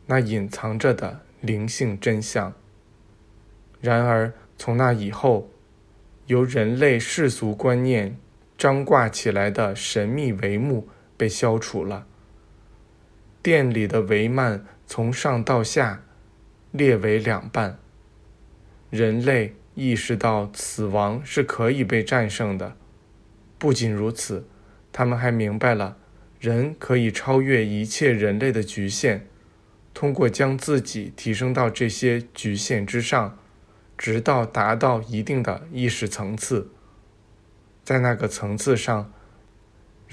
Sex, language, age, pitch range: male, Chinese, 20-39, 105-125 Hz